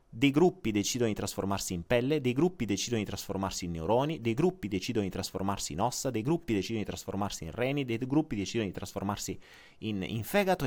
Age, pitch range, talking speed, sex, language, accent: 30-49, 95-145 Hz, 200 wpm, male, Italian, native